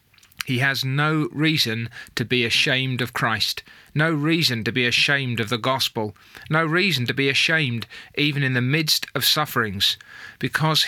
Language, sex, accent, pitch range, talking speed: English, male, British, 120-150 Hz, 160 wpm